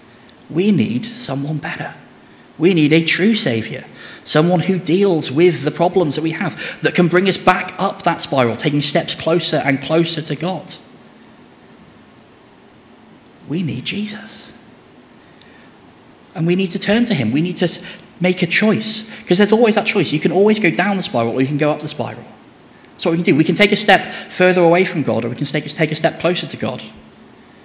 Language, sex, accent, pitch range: English, male, British, 140-180 Hz